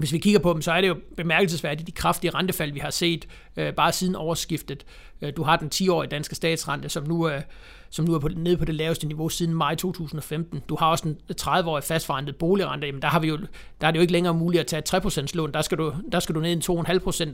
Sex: male